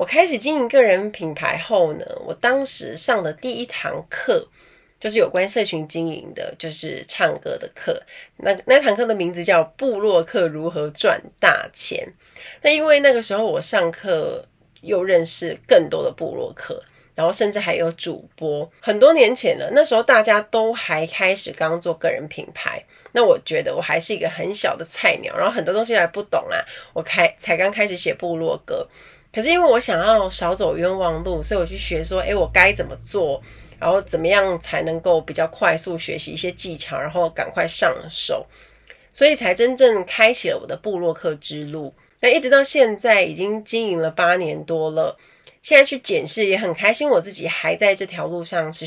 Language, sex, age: Chinese, female, 30-49